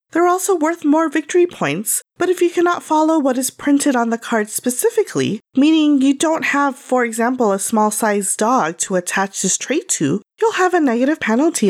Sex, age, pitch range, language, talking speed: female, 30-49, 215-310 Hz, English, 190 wpm